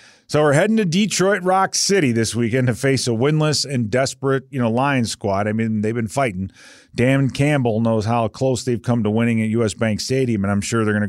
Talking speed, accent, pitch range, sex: 225 wpm, American, 105-130 Hz, male